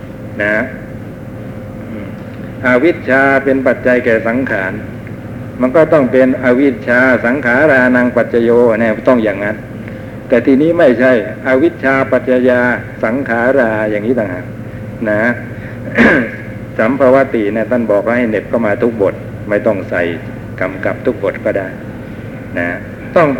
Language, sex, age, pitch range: Thai, male, 60-79, 110-130 Hz